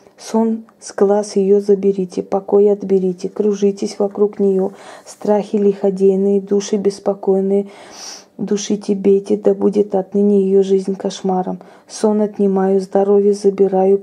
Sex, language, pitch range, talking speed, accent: female, Russian, 195-205 Hz, 110 wpm, native